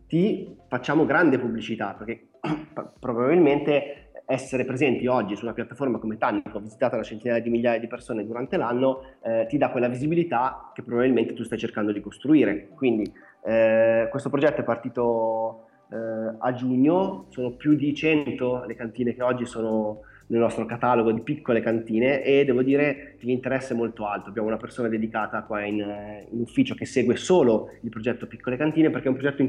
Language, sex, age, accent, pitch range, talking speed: Italian, male, 20-39, native, 115-130 Hz, 175 wpm